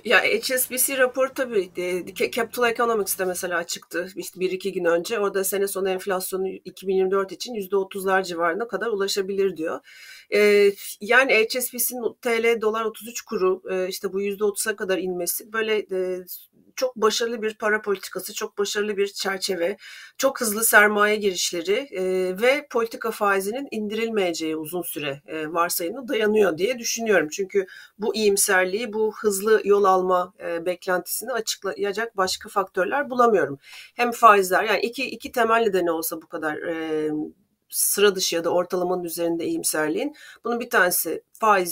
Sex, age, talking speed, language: female, 40-59, 135 wpm, Turkish